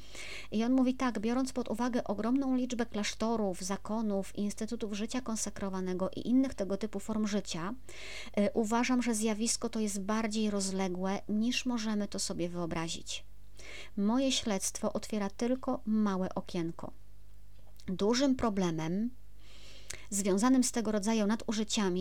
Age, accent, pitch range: 40-59, native, 185-235 Hz